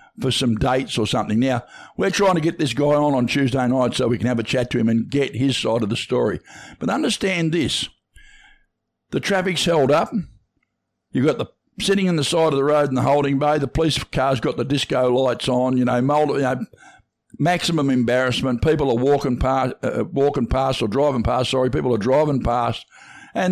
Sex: male